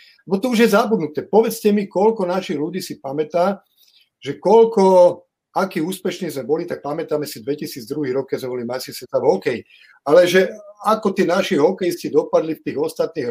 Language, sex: Slovak, male